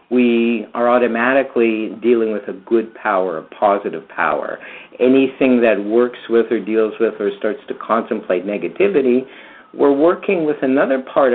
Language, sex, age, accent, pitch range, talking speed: English, male, 50-69, American, 115-135 Hz, 150 wpm